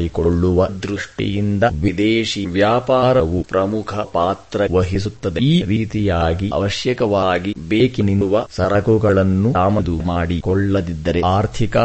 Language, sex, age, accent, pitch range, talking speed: English, male, 30-49, Indian, 90-105 Hz, 80 wpm